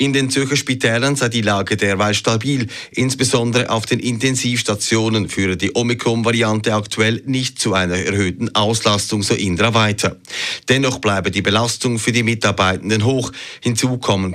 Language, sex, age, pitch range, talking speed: German, male, 30-49, 100-120 Hz, 145 wpm